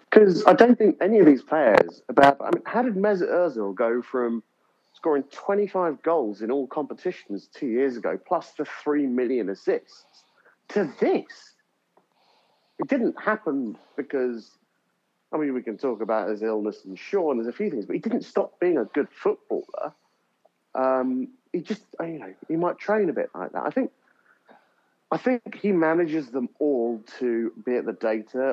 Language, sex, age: English, male, 40-59